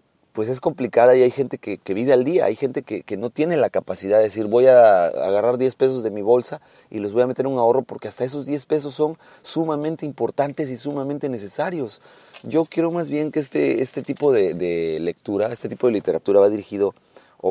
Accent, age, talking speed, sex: Mexican, 30-49, 225 wpm, male